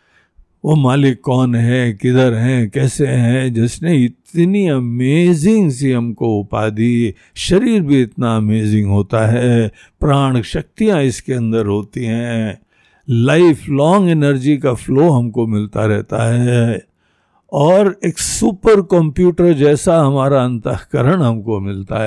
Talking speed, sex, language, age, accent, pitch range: 120 wpm, male, Hindi, 60-79, native, 115-175 Hz